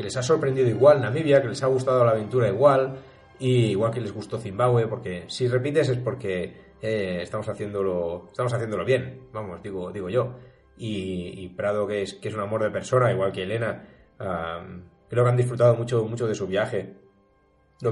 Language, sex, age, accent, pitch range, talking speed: Spanish, male, 30-49, Spanish, 100-125 Hz, 195 wpm